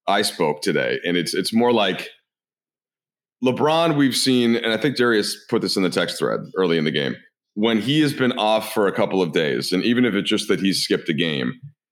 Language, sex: English, male